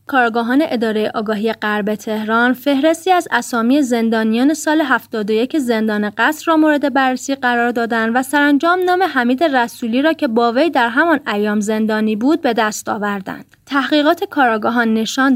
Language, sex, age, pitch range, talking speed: Persian, female, 30-49, 215-290 Hz, 145 wpm